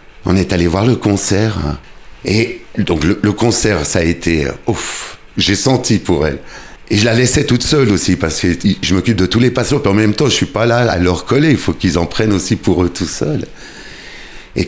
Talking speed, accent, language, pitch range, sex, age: 235 wpm, French, French, 90-115 Hz, male, 60-79